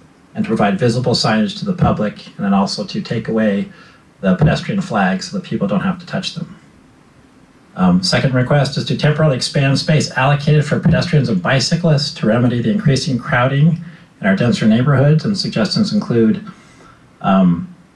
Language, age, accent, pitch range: English, 40-59, American, 130-185 Hz